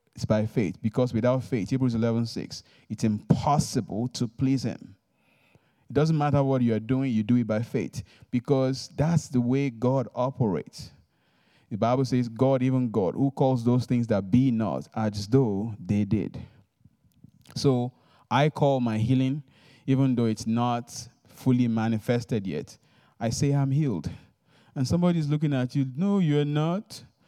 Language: English